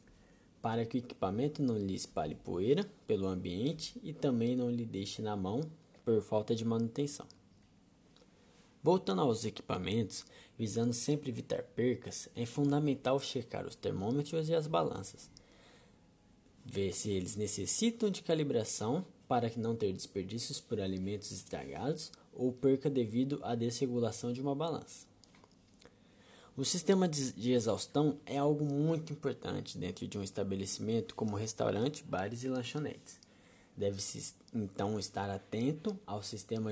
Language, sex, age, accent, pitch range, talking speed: Portuguese, male, 20-39, Brazilian, 100-135 Hz, 130 wpm